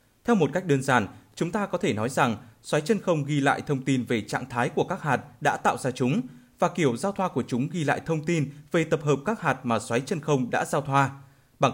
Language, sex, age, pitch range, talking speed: Vietnamese, male, 20-39, 120-155 Hz, 260 wpm